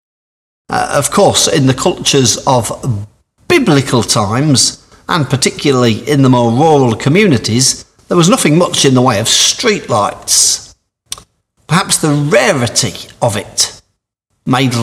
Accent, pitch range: British, 115-140 Hz